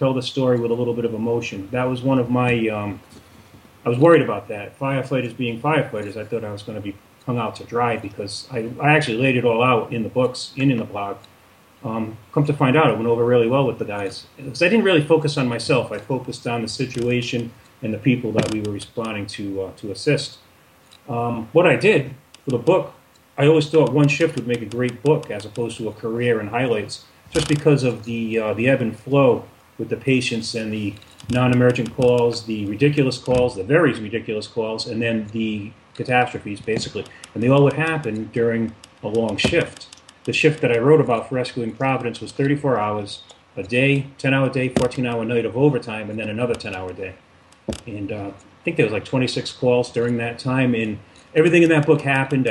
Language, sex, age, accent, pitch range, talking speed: English, male, 30-49, American, 110-130 Hz, 215 wpm